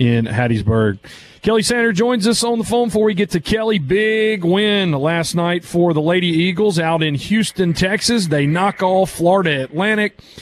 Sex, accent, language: male, American, English